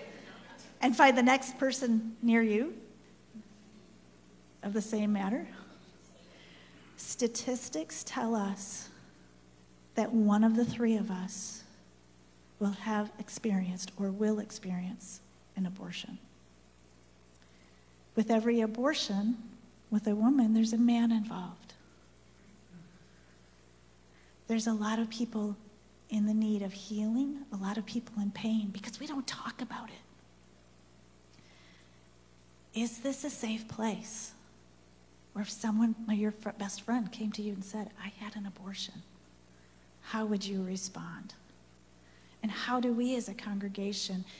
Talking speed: 125 wpm